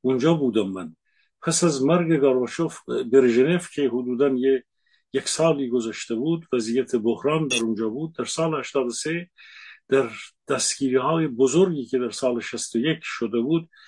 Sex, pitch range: male, 125-160 Hz